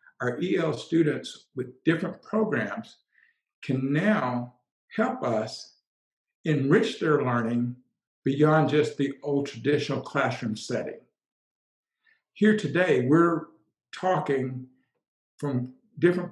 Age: 60-79